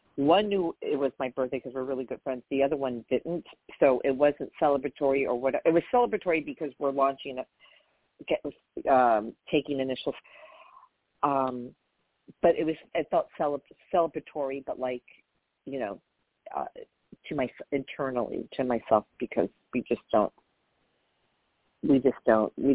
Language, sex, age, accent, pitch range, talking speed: English, female, 50-69, American, 130-160 Hz, 150 wpm